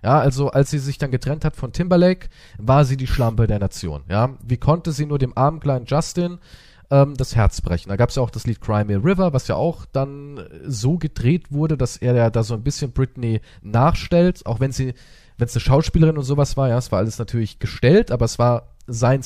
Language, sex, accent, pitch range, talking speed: German, male, German, 120-155 Hz, 230 wpm